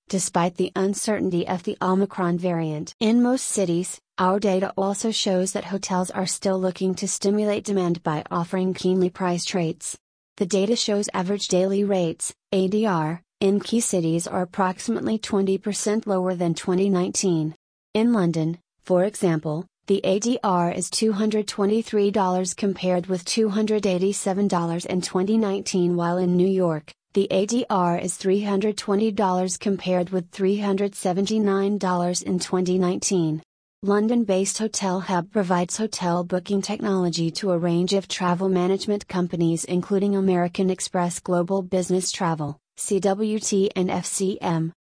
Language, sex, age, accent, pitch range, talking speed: English, female, 30-49, American, 180-200 Hz, 125 wpm